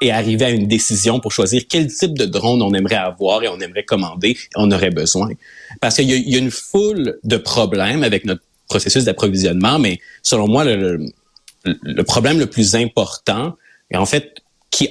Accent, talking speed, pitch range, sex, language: Canadian, 195 wpm, 105-140 Hz, male, French